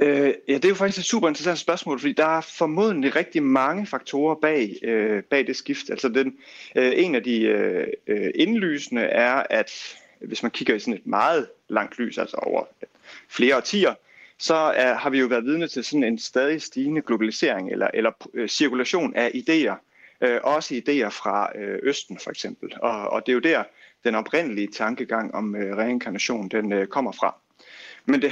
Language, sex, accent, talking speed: Danish, male, native, 165 wpm